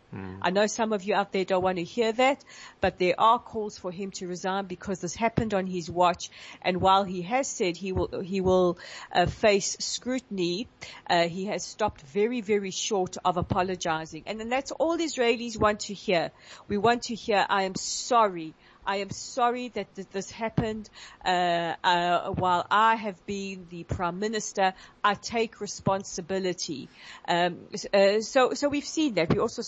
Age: 40-59